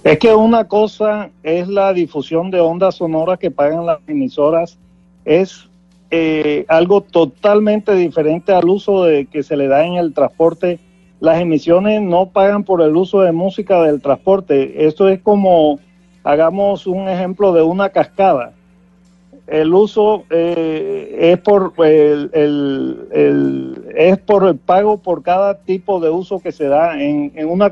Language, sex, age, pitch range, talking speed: Spanish, male, 40-59, 165-200 Hz, 145 wpm